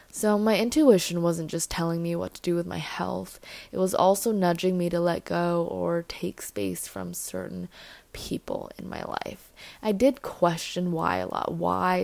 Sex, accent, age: female, American, 20-39